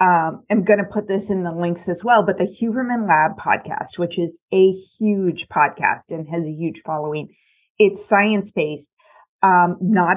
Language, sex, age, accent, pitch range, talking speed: English, female, 30-49, American, 165-200 Hz, 185 wpm